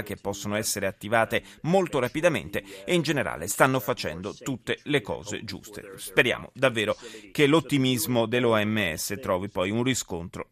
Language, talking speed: Italian, 135 wpm